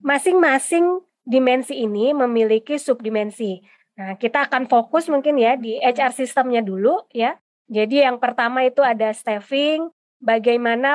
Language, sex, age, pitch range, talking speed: Indonesian, female, 20-39, 230-290 Hz, 125 wpm